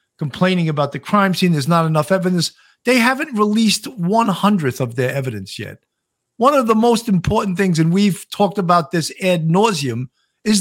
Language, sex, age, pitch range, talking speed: English, male, 50-69, 135-190 Hz, 180 wpm